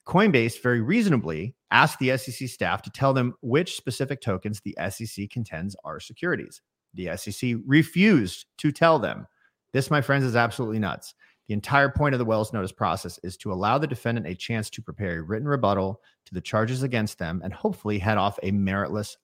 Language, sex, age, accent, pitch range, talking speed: English, male, 40-59, American, 100-135 Hz, 190 wpm